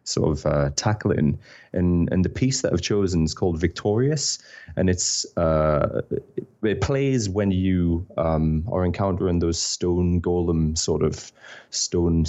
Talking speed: 145 wpm